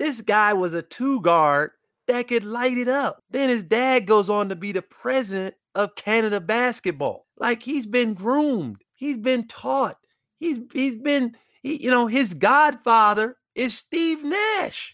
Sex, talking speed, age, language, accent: male, 165 wpm, 30-49, English, American